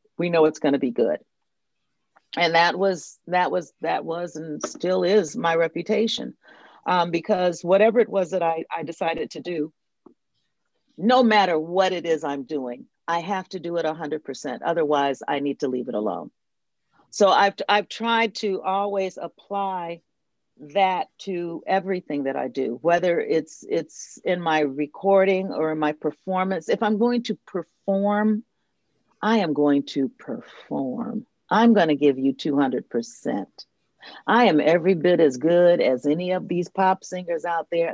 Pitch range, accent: 155-195 Hz, American